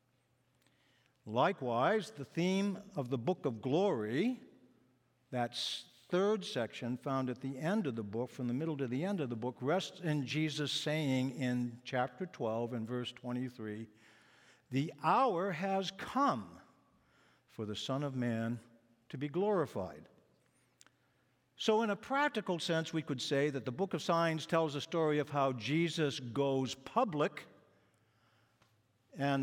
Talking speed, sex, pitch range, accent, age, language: 145 wpm, male, 125-160 Hz, American, 60-79, English